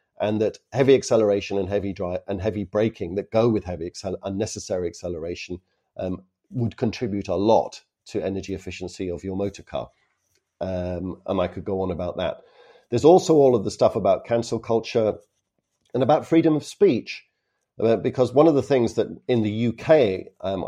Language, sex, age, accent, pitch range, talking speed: English, male, 50-69, British, 95-125 Hz, 165 wpm